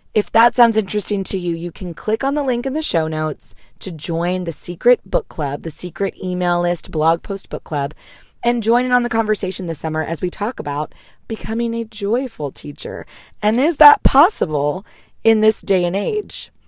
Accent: American